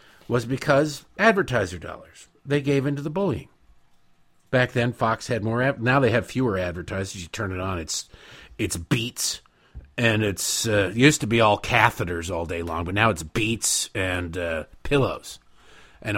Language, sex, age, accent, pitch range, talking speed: English, male, 50-69, American, 95-140 Hz, 165 wpm